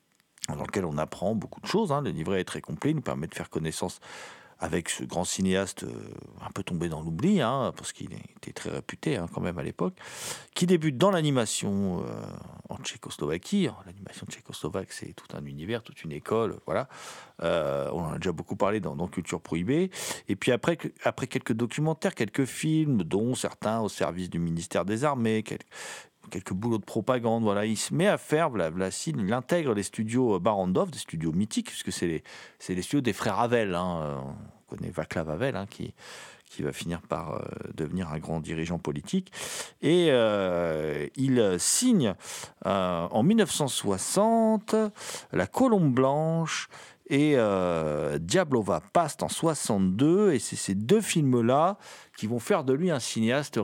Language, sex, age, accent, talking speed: French, male, 50-69, French, 180 wpm